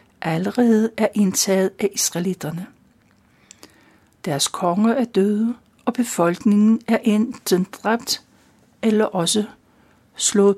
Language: Danish